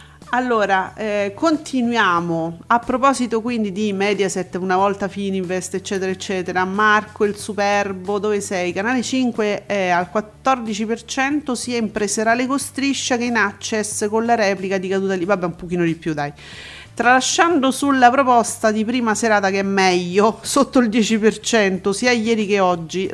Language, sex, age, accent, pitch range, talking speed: Italian, female, 40-59, native, 190-230 Hz, 150 wpm